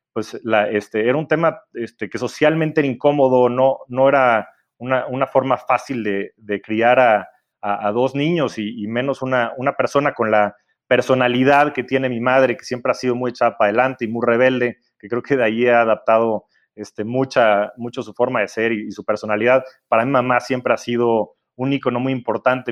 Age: 30-49